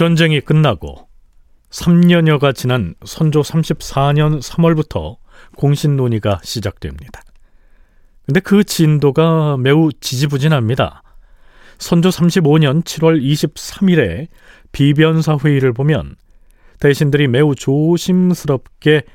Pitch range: 135-200 Hz